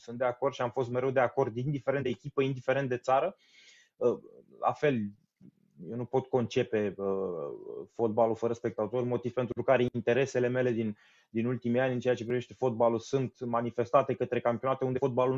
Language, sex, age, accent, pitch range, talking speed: Romanian, male, 20-39, native, 115-145 Hz, 170 wpm